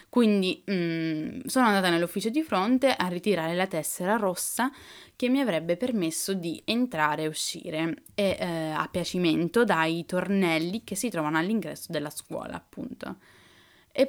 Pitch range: 165-210 Hz